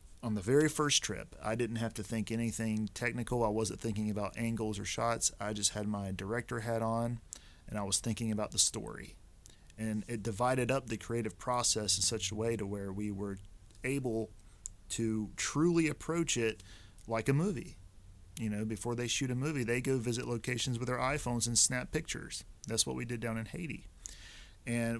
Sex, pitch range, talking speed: male, 105-125 Hz, 195 wpm